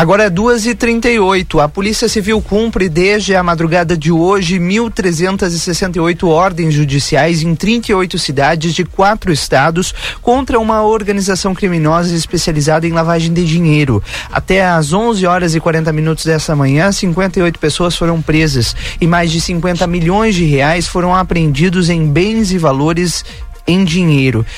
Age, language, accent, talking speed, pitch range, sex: 30-49, Portuguese, Brazilian, 140 wpm, 155-195 Hz, male